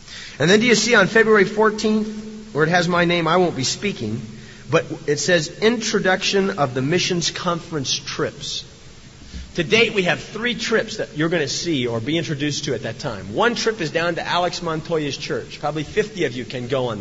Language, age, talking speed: English, 40-59, 210 wpm